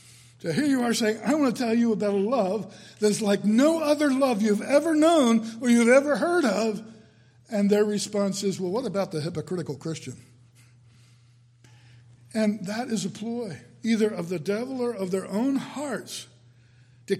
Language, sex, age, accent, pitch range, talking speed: English, male, 60-79, American, 165-245 Hz, 180 wpm